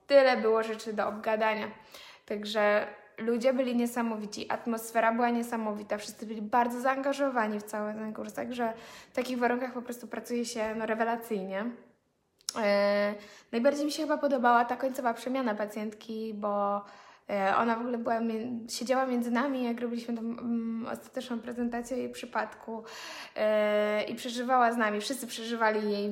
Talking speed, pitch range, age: 135 wpm, 210-245 Hz, 20-39